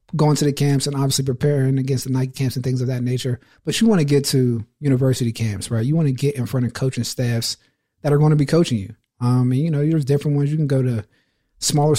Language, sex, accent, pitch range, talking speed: English, male, American, 130-155 Hz, 260 wpm